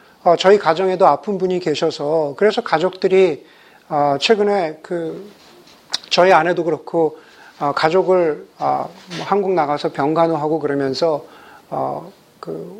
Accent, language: native, Korean